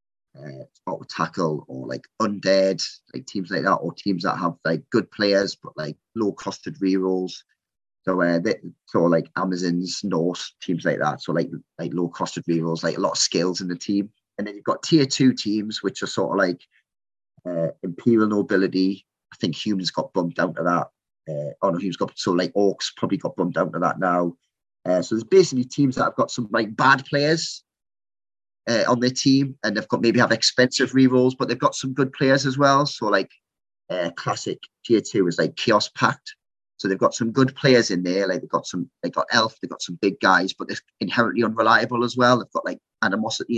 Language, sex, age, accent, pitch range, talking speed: English, male, 30-49, British, 95-125 Hz, 210 wpm